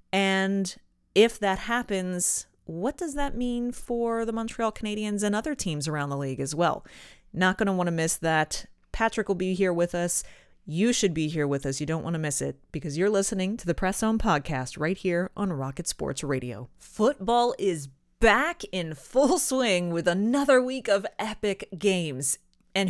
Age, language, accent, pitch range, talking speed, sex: 30-49, English, American, 165-245 Hz, 190 wpm, female